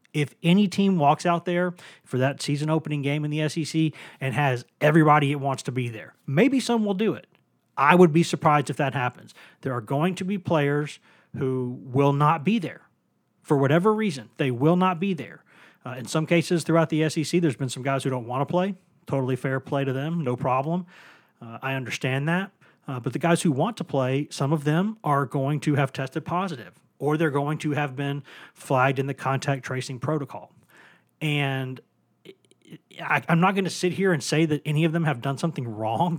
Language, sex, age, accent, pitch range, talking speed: English, male, 40-59, American, 135-165 Hz, 210 wpm